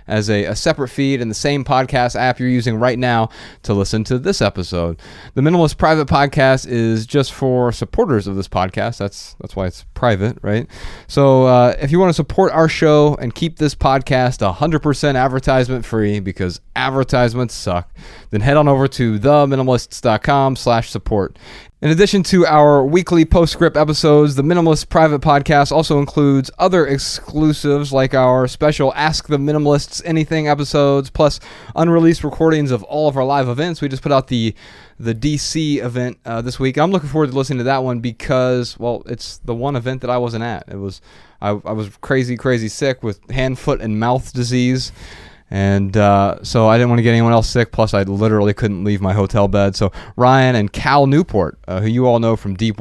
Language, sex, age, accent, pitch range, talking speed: English, male, 30-49, American, 105-140 Hz, 190 wpm